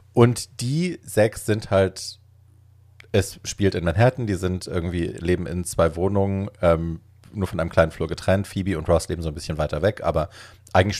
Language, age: German, 40-59